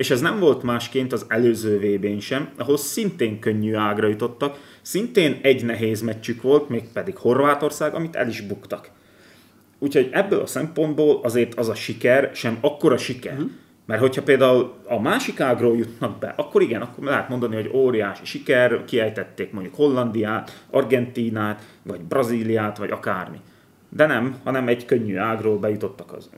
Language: Hungarian